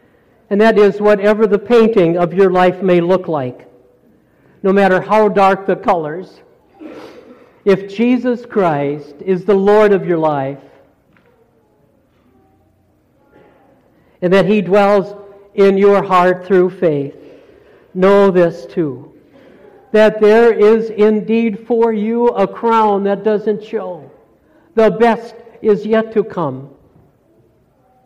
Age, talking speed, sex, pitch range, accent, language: 60-79, 120 wpm, male, 160-205 Hz, American, English